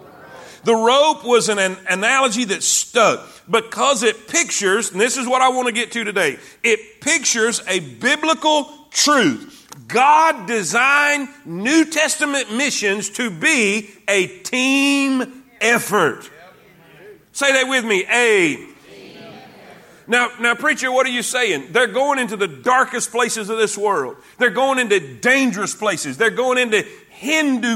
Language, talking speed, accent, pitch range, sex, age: English, 145 wpm, American, 220-285 Hz, male, 40-59